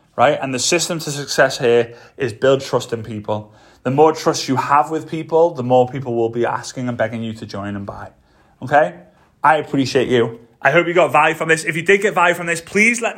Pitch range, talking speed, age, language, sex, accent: 135-175 Hz, 235 wpm, 30-49, English, male, British